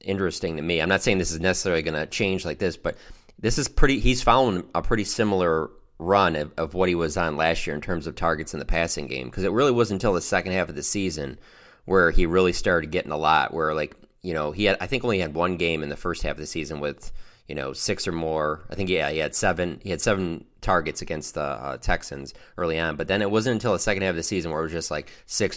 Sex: male